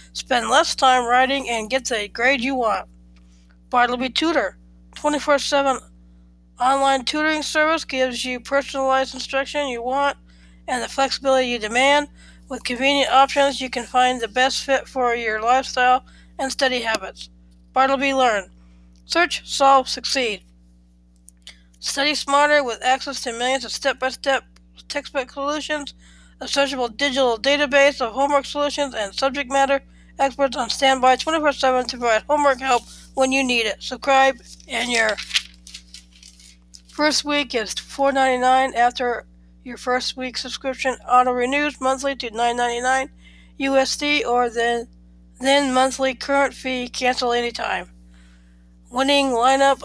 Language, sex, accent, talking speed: English, female, American, 130 wpm